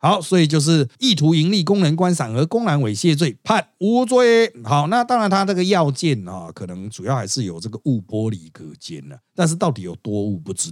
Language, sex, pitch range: Chinese, male, 110-170 Hz